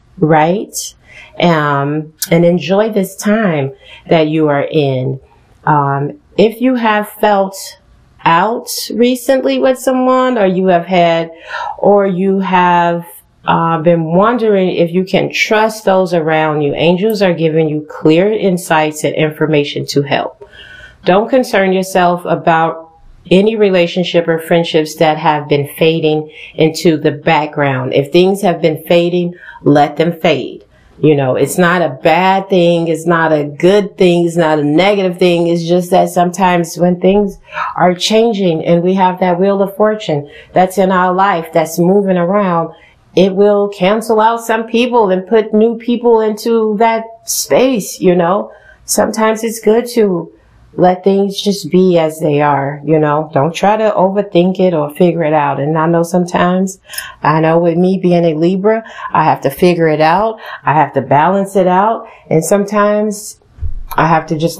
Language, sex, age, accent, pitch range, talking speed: English, female, 40-59, American, 160-200 Hz, 160 wpm